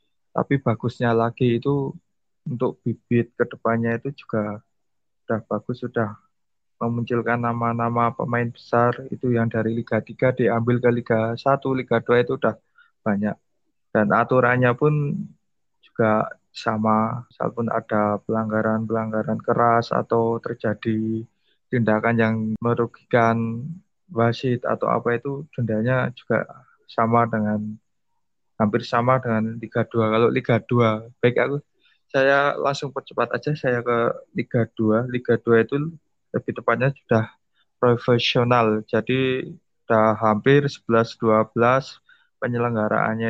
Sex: male